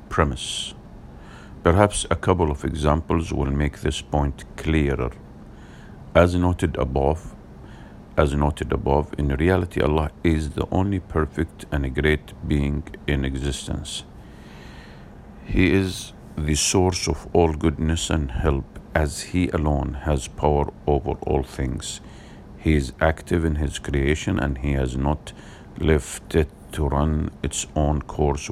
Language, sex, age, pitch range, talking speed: English, male, 50-69, 70-90 Hz, 135 wpm